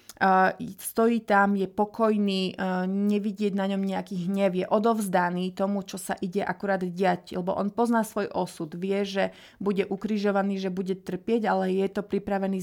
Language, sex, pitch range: Slovak, female, 185-210 Hz